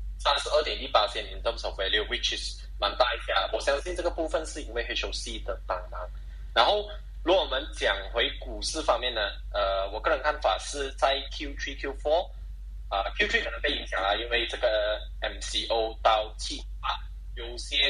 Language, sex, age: Chinese, male, 10-29